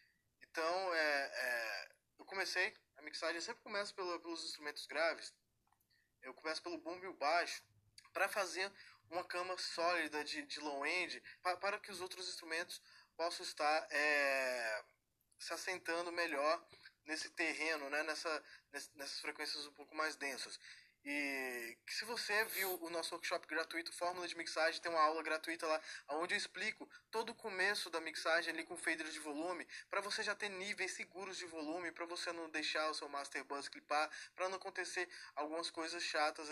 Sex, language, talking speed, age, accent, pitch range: male, Portuguese, 160 wpm, 20-39, Brazilian, 155-185 Hz